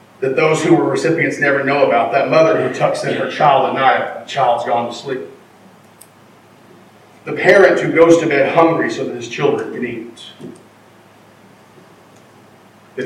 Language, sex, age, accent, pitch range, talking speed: English, male, 40-59, American, 125-140 Hz, 170 wpm